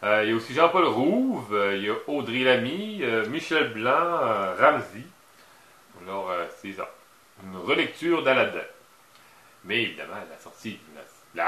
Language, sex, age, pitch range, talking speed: English, male, 40-59, 100-130 Hz, 155 wpm